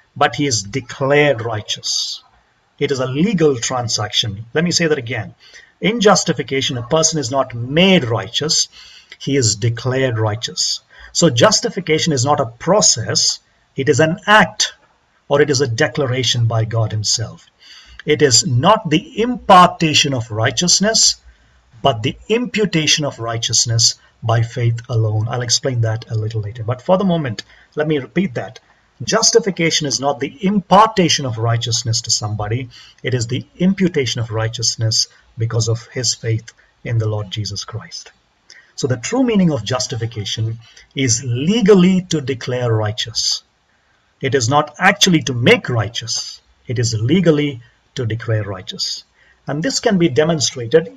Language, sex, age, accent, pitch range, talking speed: English, male, 50-69, Indian, 115-165 Hz, 150 wpm